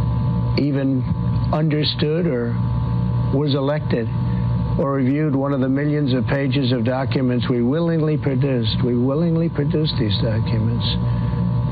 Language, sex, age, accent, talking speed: English, male, 60-79, American, 120 wpm